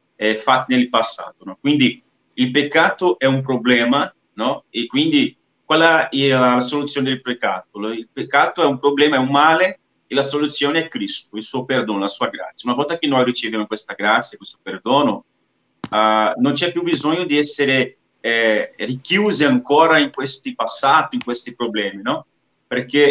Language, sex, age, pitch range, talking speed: Italian, male, 30-49, 120-160 Hz, 170 wpm